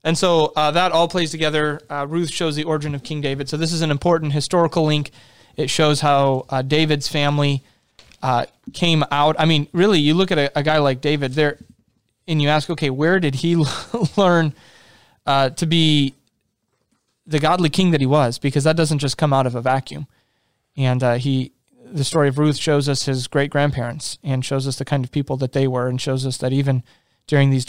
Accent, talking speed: American, 210 wpm